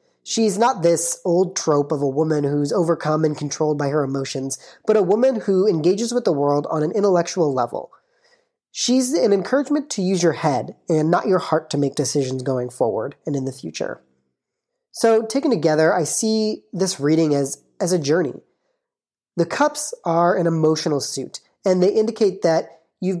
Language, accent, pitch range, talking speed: English, American, 145-195 Hz, 180 wpm